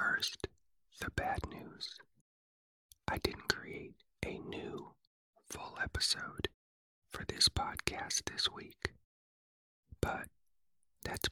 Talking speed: 95 wpm